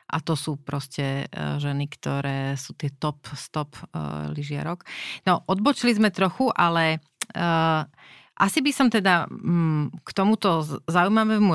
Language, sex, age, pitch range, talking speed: Slovak, female, 30-49, 150-195 Hz, 135 wpm